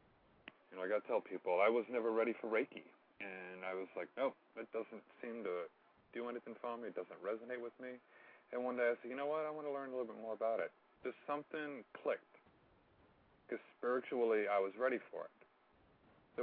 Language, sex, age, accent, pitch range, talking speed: English, male, 40-59, American, 95-125 Hz, 215 wpm